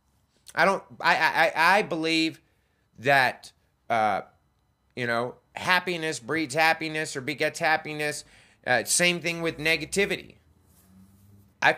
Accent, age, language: American, 30-49, English